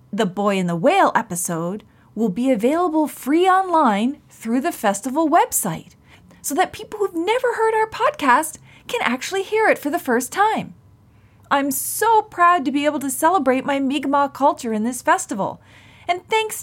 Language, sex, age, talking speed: English, female, 30-49, 170 wpm